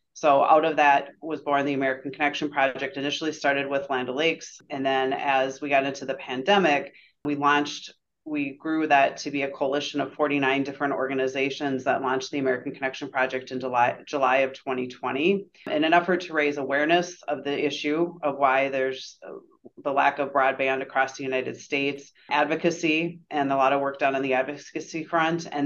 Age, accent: 30-49, American